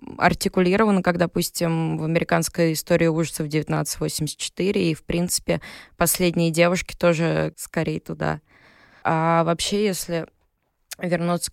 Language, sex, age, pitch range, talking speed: Russian, female, 20-39, 165-190 Hz, 105 wpm